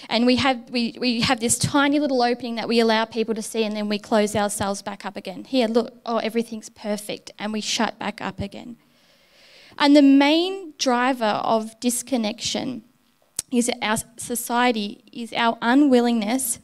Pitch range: 210-255 Hz